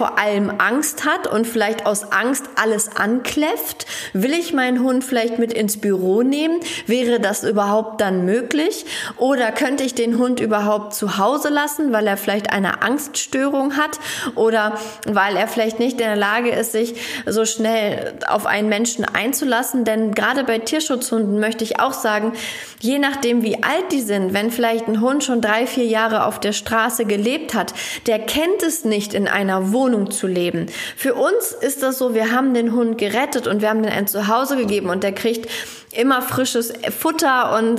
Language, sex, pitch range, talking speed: German, female, 215-260 Hz, 185 wpm